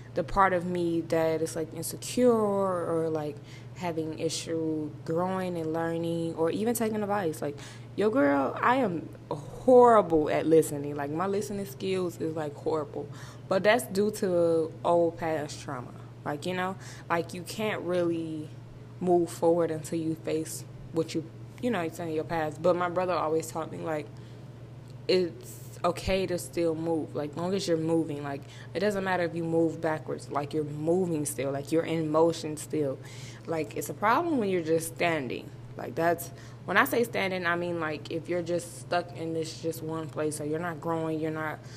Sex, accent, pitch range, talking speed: female, American, 145-175 Hz, 180 wpm